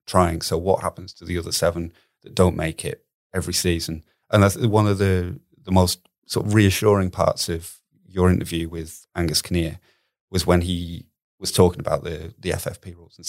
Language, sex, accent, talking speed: English, male, British, 190 wpm